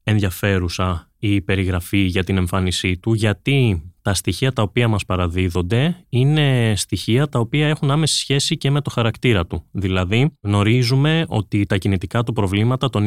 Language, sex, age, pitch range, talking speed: Greek, male, 20-39, 100-125 Hz, 155 wpm